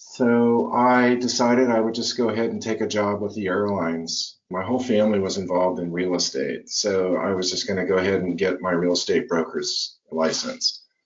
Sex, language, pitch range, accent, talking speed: male, English, 95-125 Hz, American, 205 wpm